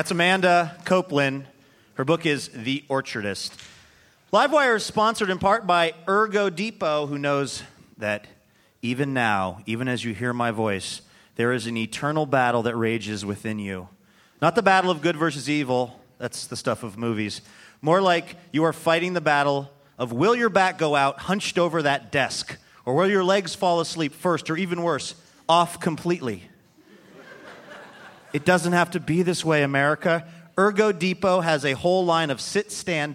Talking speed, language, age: 170 wpm, English, 30-49